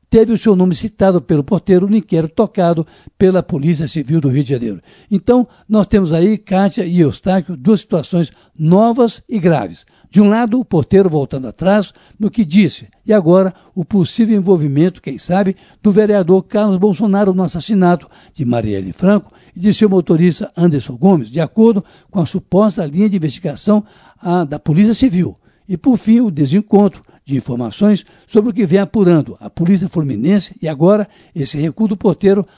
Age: 60-79